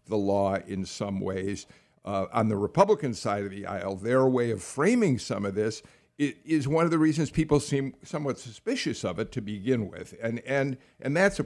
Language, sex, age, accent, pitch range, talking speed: English, male, 50-69, American, 115-145 Hz, 200 wpm